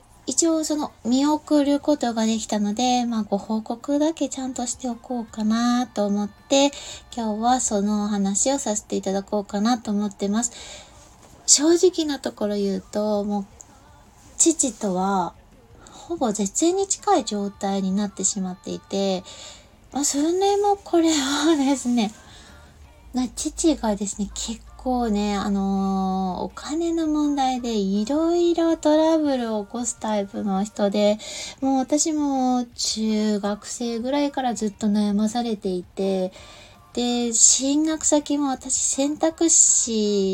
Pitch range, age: 205-285 Hz, 20-39